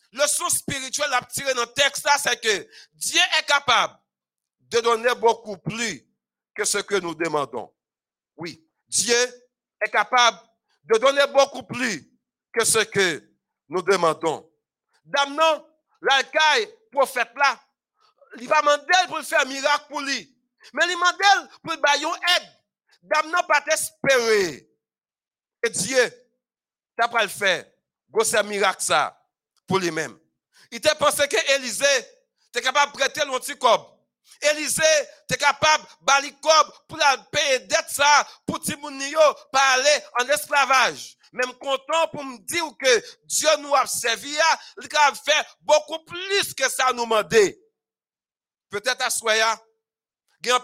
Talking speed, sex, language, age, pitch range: 135 wpm, male, French, 60-79, 235-305 Hz